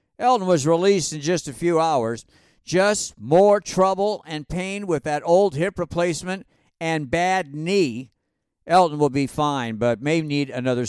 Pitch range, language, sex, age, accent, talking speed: 165-225 Hz, English, male, 50-69, American, 160 wpm